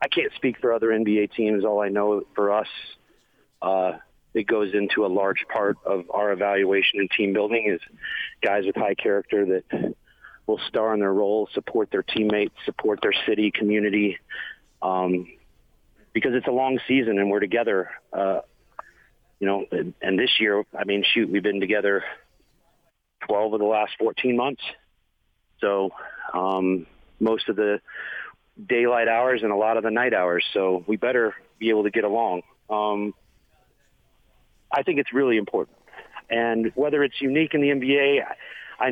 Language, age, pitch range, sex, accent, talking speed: English, 40-59, 100-120 Hz, male, American, 165 wpm